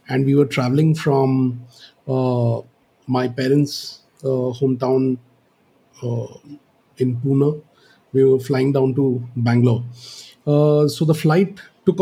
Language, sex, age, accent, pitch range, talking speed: English, male, 30-49, Indian, 130-155 Hz, 120 wpm